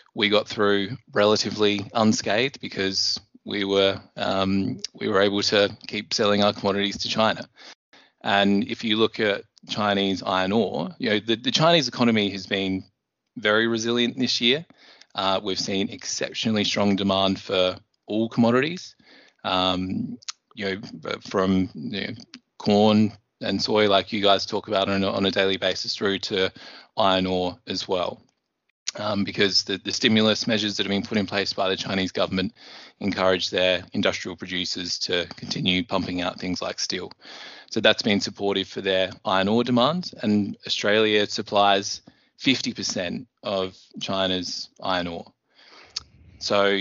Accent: Australian